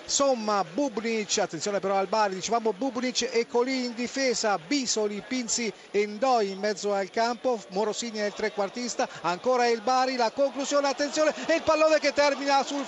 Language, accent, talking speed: Italian, native, 170 wpm